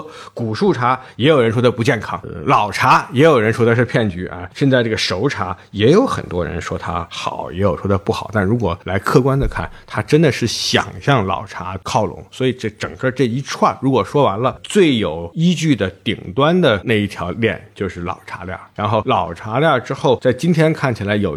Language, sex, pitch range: Chinese, male, 100-135 Hz